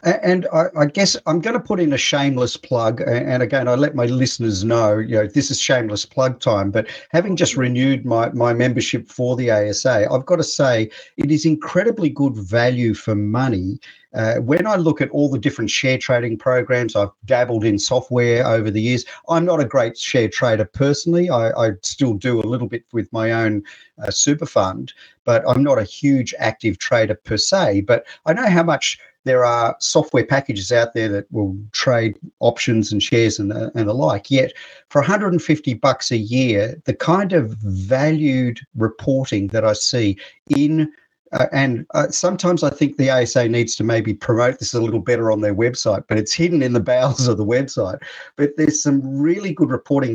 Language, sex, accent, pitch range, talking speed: English, male, Australian, 110-145 Hz, 195 wpm